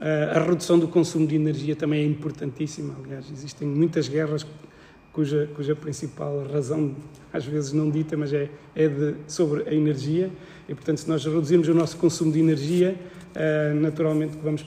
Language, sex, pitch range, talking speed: Portuguese, male, 150-170 Hz, 165 wpm